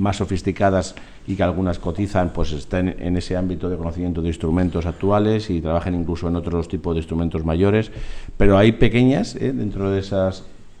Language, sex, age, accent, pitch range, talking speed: Spanish, male, 50-69, Spanish, 90-105 Hz, 170 wpm